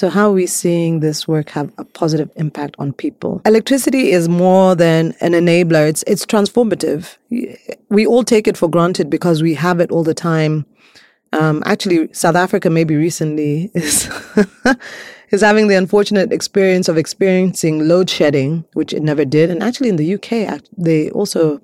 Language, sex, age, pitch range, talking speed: English, female, 30-49, 155-195 Hz, 170 wpm